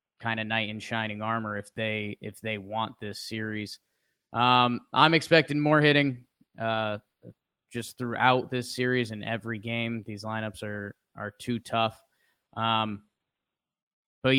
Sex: male